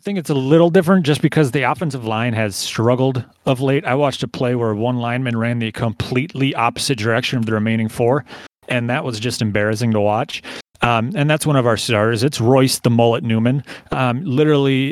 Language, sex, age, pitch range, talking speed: English, male, 30-49, 110-130 Hz, 205 wpm